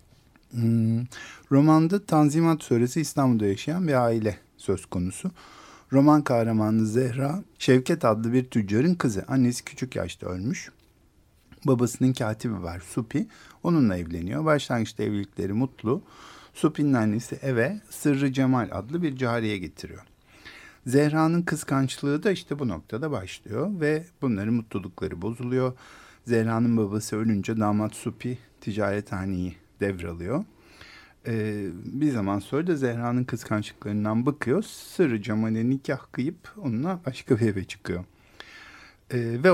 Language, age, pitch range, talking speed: Turkish, 50-69, 105-145 Hz, 110 wpm